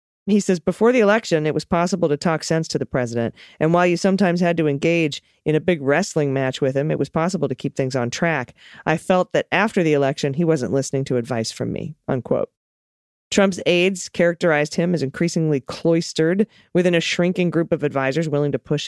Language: English